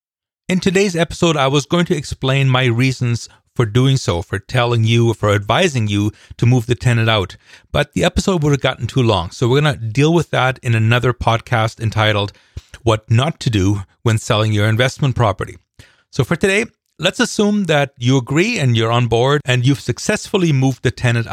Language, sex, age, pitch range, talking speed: English, male, 40-59, 115-150 Hz, 195 wpm